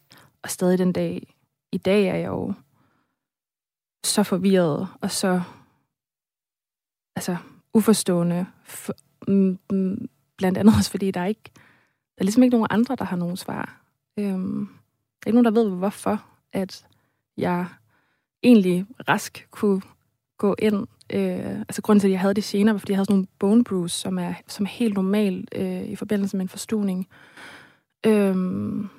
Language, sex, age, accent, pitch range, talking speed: Danish, female, 20-39, native, 185-210 Hz, 165 wpm